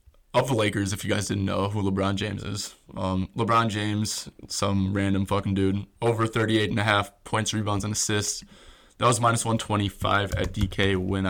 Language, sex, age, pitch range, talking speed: English, male, 20-39, 95-110 Hz, 185 wpm